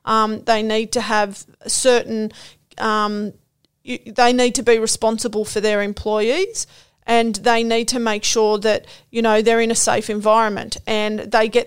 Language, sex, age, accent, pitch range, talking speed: English, female, 40-59, Australian, 215-235 Hz, 165 wpm